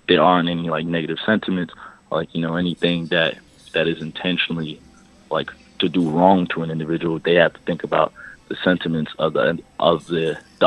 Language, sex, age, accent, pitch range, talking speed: English, male, 20-39, American, 80-90 Hz, 185 wpm